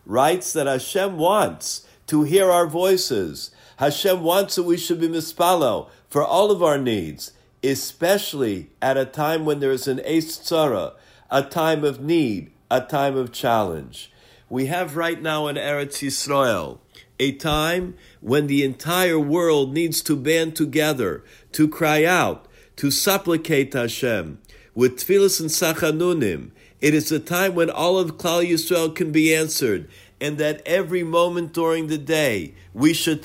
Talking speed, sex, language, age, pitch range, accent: 155 wpm, male, English, 50-69, 140-175 Hz, American